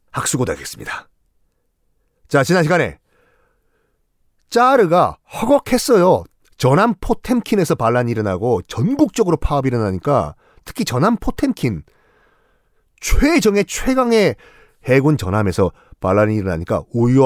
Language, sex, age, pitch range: Korean, male, 40-59, 120-190 Hz